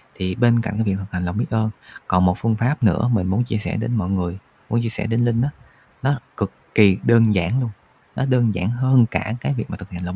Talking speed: 265 wpm